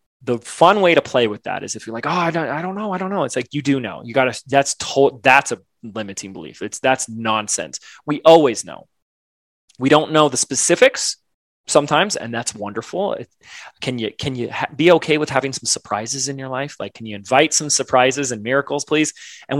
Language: English